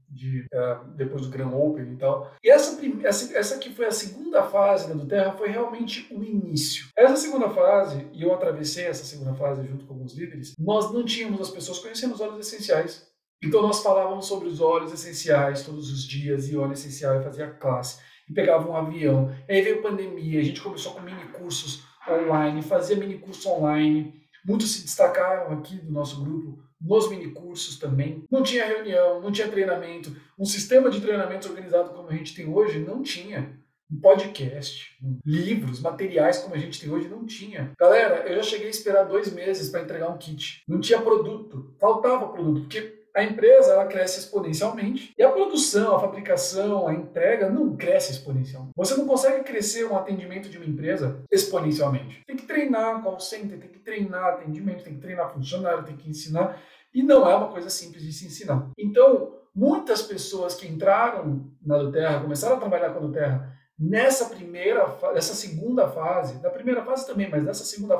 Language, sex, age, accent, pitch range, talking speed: Portuguese, male, 50-69, Brazilian, 150-215 Hz, 190 wpm